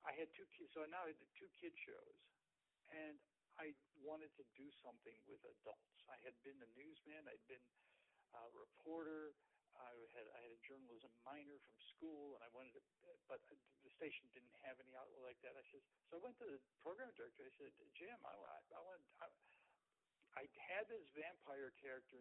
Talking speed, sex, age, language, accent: 190 wpm, male, 60-79, English, American